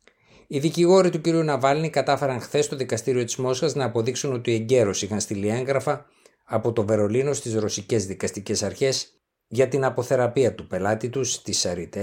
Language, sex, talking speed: Greek, male, 165 wpm